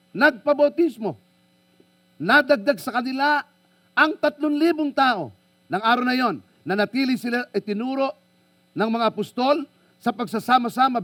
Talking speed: 115 wpm